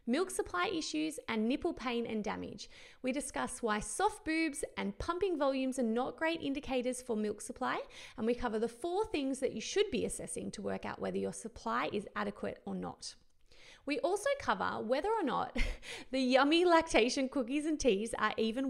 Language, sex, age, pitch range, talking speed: English, female, 30-49, 225-340 Hz, 185 wpm